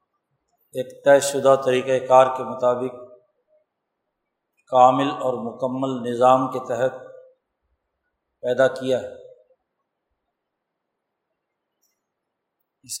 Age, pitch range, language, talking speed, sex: 50-69, 130-155 Hz, Urdu, 80 wpm, male